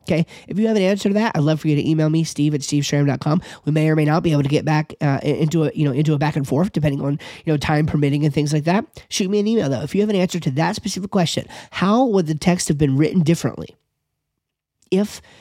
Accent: American